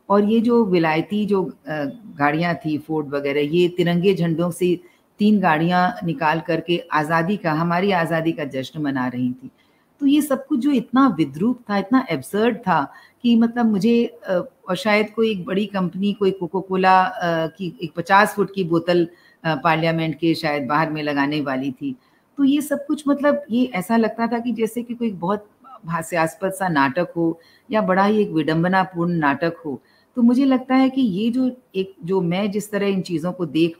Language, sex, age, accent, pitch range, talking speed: Hindi, female, 50-69, native, 150-215 Hz, 185 wpm